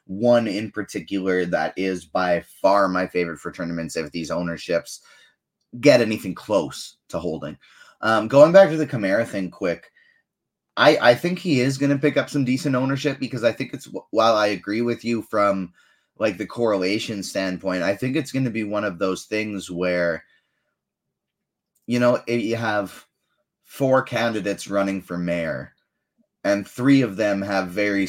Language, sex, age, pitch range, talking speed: English, male, 20-39, 95-125 Hz, 170 wpm